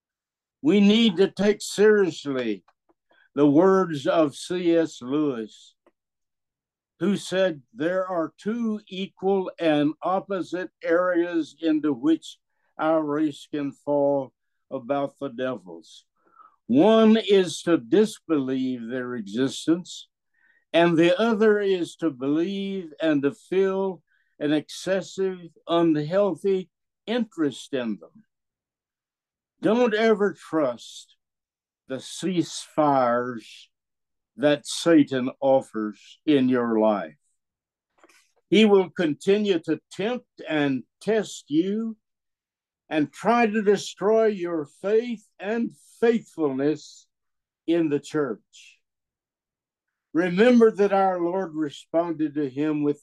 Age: 60-79